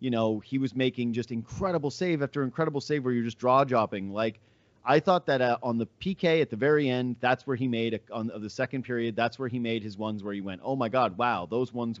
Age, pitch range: 30-49, 115-160 Hz